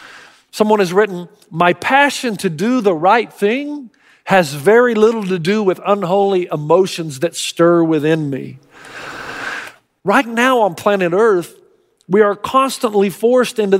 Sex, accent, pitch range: male, American, 190-255 Hz